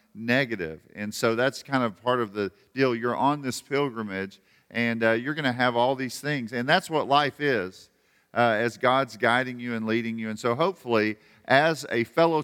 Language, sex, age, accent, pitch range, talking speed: English, male, 50-69, American, 120-150 Hz, 205 wpm